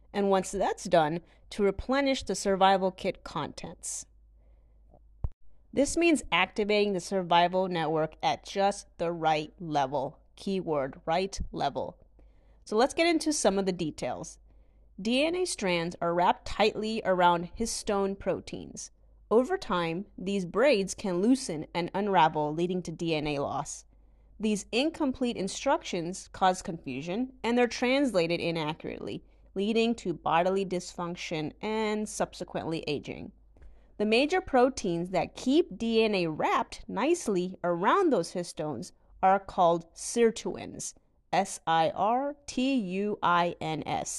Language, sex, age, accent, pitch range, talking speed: English, female, 30-49, American, 170-230 Hz, 115 wpm